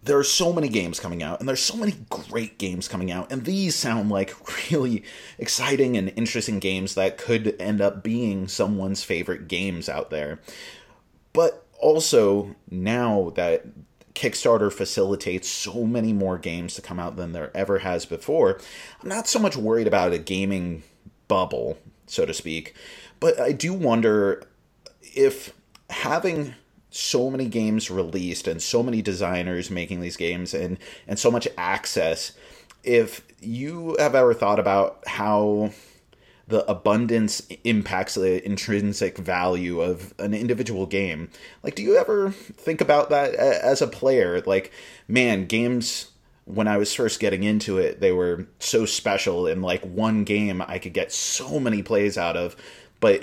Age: 30-49